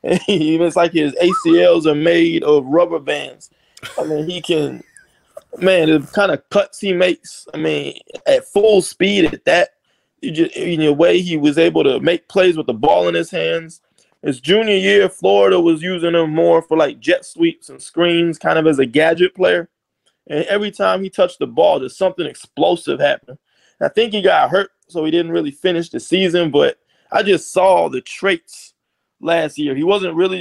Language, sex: English, male